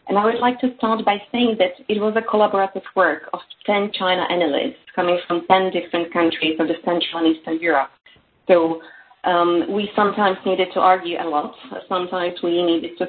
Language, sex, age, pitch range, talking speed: English, female, 30-49, 165-200 Hz, 195 wpm